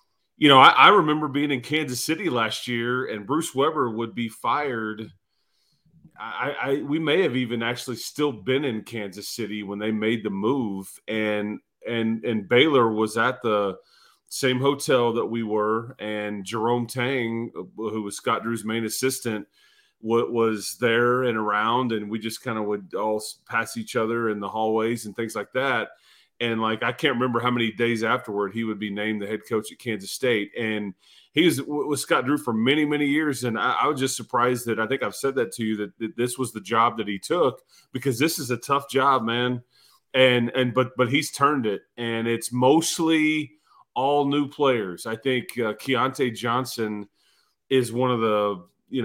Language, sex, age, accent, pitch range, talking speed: English, male, 30-49, American, 110-130 Hz, 195 wpm